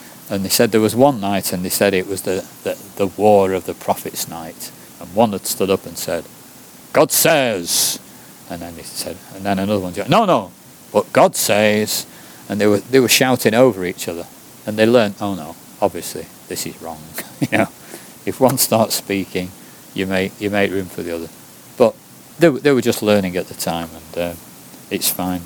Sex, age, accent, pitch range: male, 40-59, British, 95-110 Hz